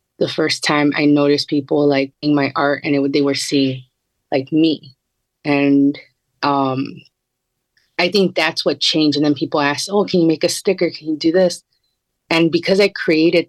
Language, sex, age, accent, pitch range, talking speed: English, female, 30-49, American, 140-160 Hz, 190 wpm